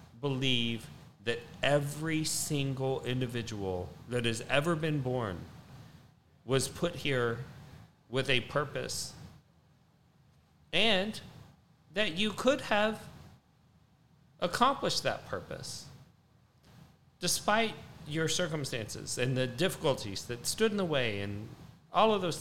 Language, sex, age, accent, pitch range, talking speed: English, male, 40-59, American, 125-175 Hz, 105 wpm